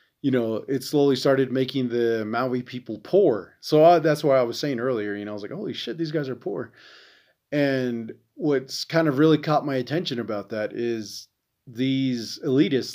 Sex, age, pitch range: male, 30-49, 115-140 Hz